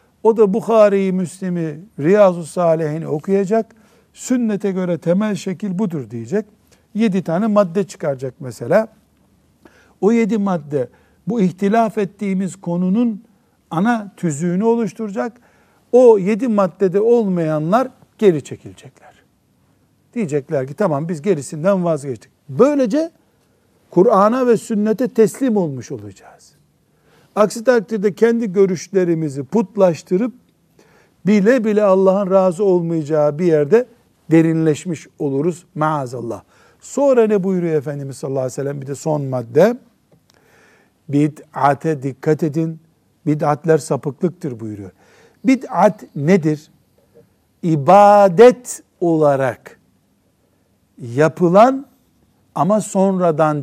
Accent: native